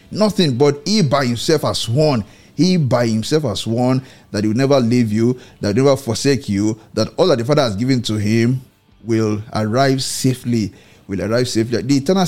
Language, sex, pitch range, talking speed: English, male, 115-160 Hz, 200 wpm